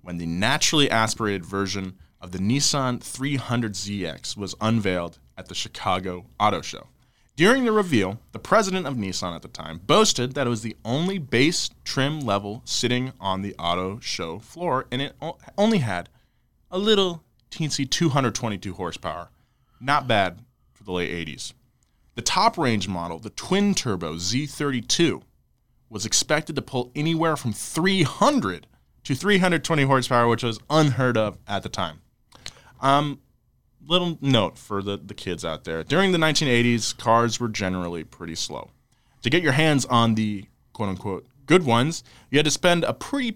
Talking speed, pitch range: 155 wpm, 100-150 Hz